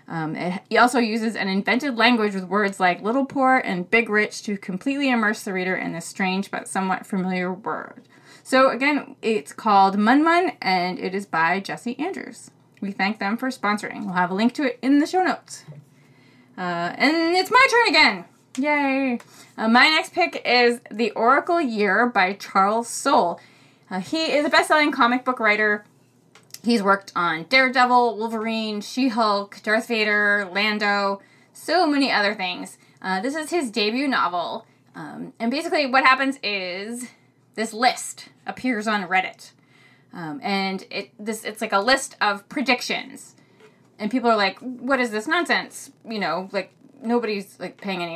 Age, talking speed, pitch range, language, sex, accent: 20-39, 165 wpm, 195-260 Hz, English, female, American